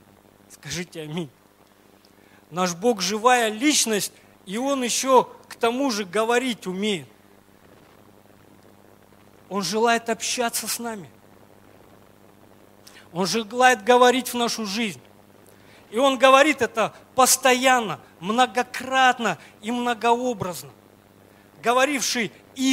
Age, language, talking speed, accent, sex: 40-59, Russian, 85 wpm, native, male